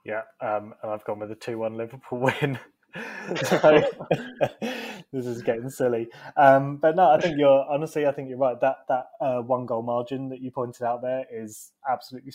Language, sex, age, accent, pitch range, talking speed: English, male, 20-39, British, 110-130 Hz, 185 wpm